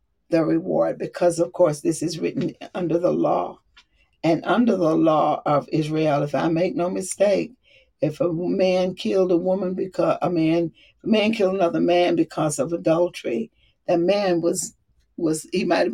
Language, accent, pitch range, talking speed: English, American, 165-210 Hz, 170 wpm